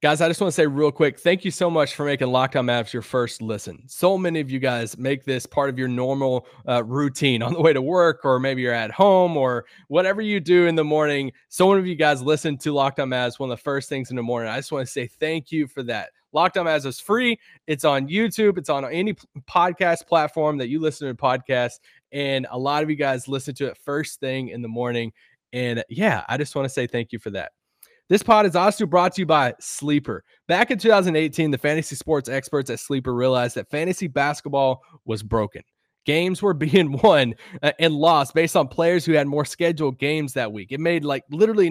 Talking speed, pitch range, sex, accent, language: 230 wpm, 130-170 Hz, male, American, English